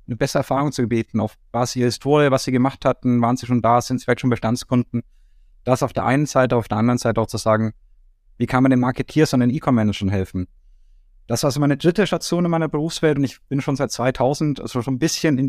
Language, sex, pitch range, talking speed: German, male, 105-130 Hz, 250 wpm